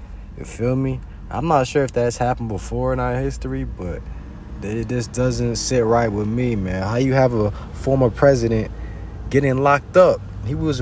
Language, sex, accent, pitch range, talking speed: English, male, American, 90-125 Hz, 175 wpm